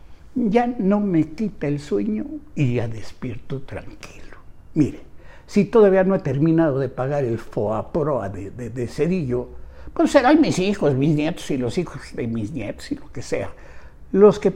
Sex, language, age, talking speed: male, Spanish, 60-79, 175 wpm